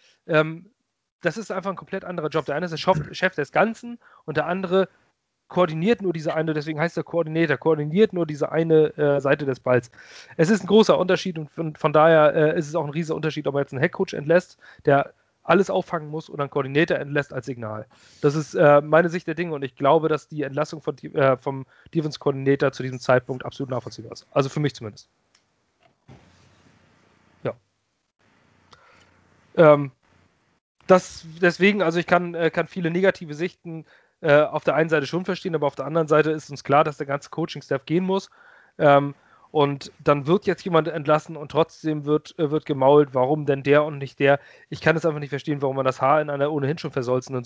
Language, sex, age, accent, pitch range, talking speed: German, male, 30-49, German, 140-175 Hz, 200 wpm